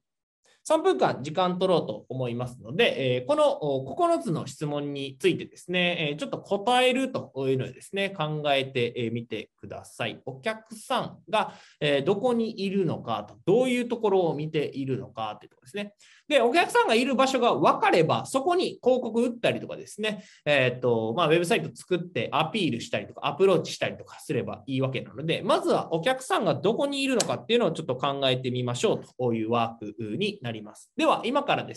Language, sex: Japanese, male